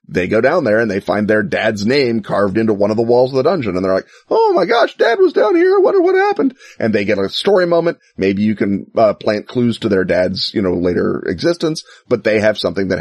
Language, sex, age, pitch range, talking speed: English, male, 30-49, 95-120 Hz, 265 wpm